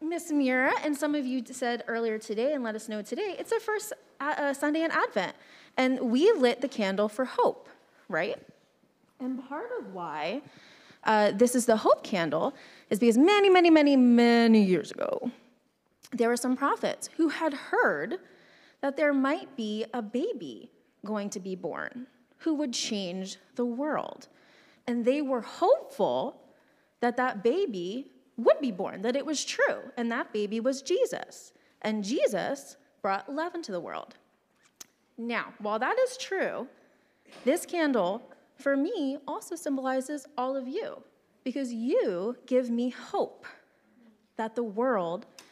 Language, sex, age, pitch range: English, female, 20-39, 220-295 Hz